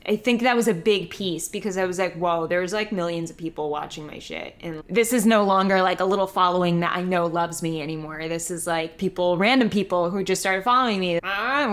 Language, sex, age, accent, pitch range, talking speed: English, female, 10-29, American, 175-220 Hz, 240 wpm